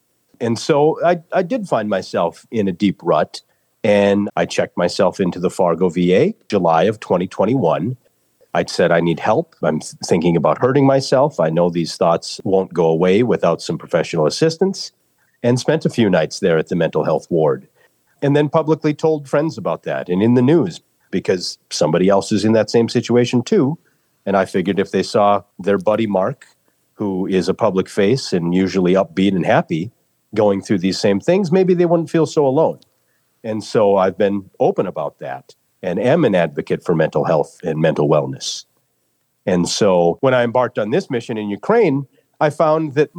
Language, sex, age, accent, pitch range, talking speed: English, male, 40-59, American, 95-125 Hz, 190 wpm